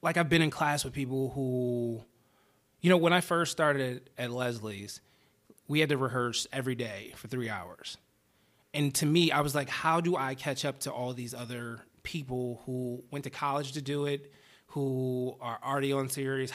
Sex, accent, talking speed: male, American, 190 wpm